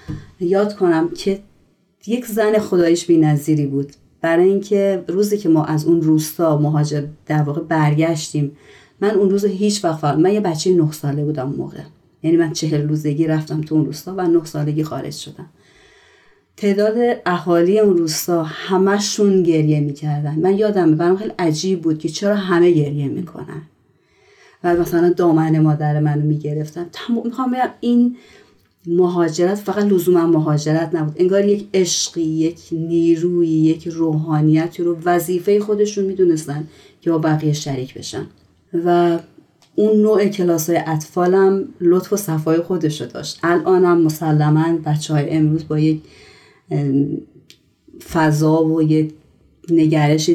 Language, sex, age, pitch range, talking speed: Persian, female, 30-49, 155-190 Hz, 140 wpm